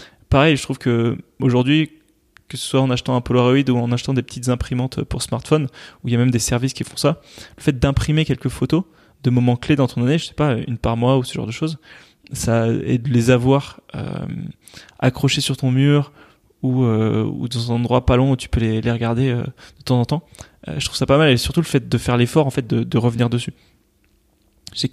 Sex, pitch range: male, 120-140 Hz